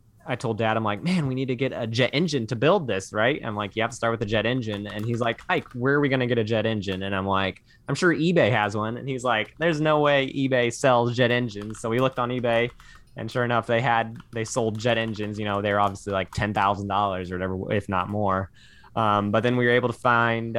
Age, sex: 20-39, male